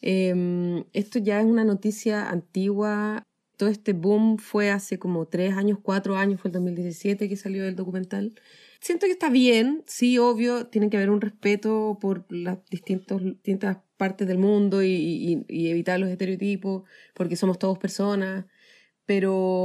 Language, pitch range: Spanish, 195-240 Hz